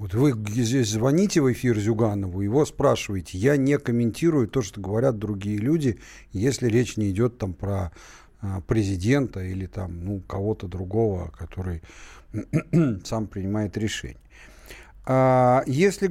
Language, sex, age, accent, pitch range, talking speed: Russian, male, 40-59, native, 100-135 Hz, 125 wpm